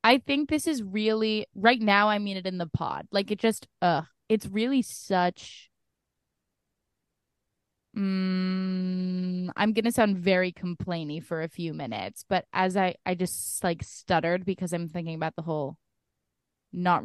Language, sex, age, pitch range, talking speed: English, female, 20-39, 170-215 Hz, 155 wpm